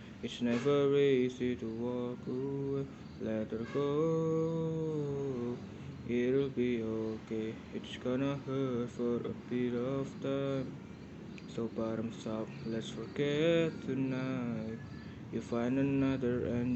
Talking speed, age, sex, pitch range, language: 105 wpm, 20-39, male, 115-135 Hz, Indonesian